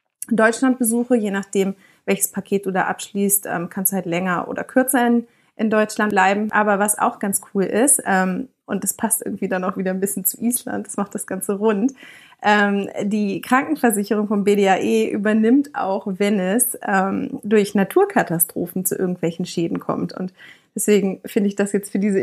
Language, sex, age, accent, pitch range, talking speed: German, female, 30-49, German, 195-240 Hz, 165 wpm